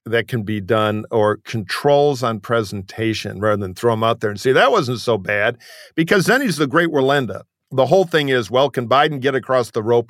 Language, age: English, 50-69